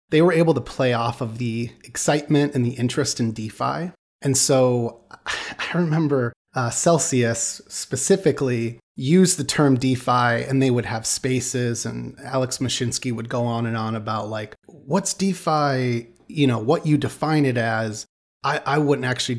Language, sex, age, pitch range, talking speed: English, male, 30-49, 120-150 Hz, 165 wpm